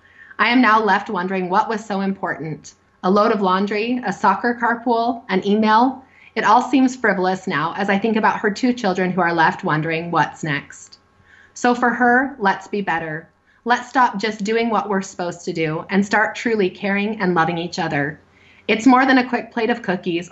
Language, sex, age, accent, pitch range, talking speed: English, female, 30-49, American, 170-220 Hz, 200 wpm